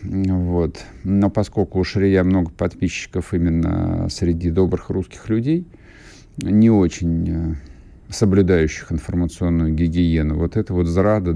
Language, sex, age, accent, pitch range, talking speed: Russian, male, 50-69, native, 80-105 Hz, 110 wpm